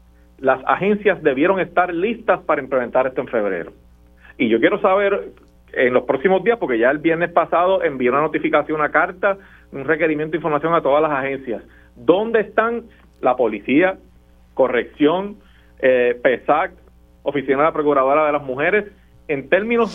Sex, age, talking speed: male, 40-59, 155 wpm